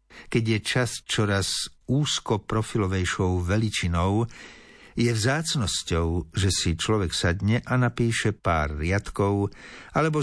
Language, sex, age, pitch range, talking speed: Slovak, male, 60-79, 90-115 Hz, 105 wpm